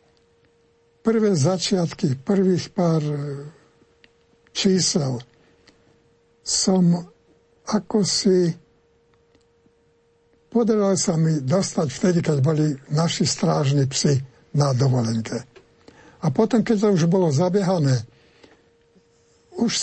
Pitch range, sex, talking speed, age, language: 135-185 Hz, male, 85 wpm, 60-79, Slovak